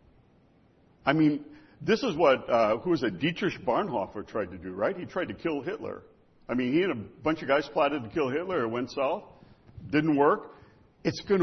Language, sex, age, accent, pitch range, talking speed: English, male, 60-79, American, 135-210 Hz, 205 wpm